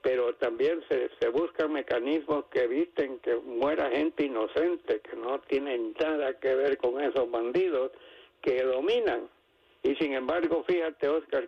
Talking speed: 145 wpm